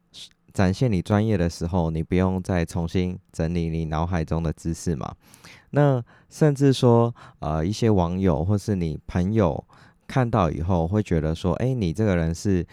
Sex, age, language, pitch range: male, 20-39, Chinese, 80-110 Hz